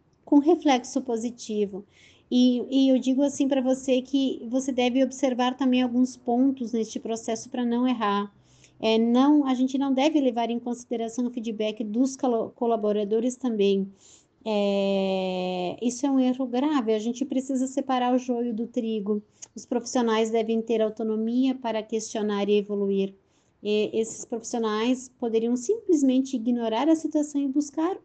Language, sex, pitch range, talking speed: Portuguese, female, 220-260 Hz, 140 wpm